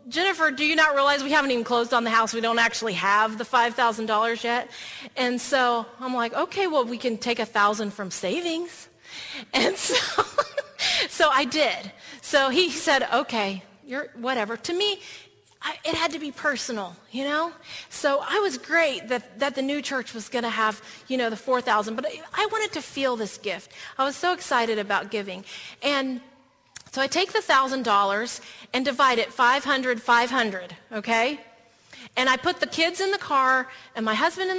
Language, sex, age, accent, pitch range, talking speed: English, female, 30-49, American, 230-300 Hz, 180 wpm